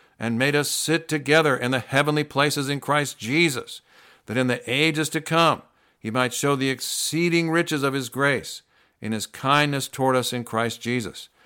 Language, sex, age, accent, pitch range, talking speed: English, male, 60-79, American, 120-145 Hz, 185 wpm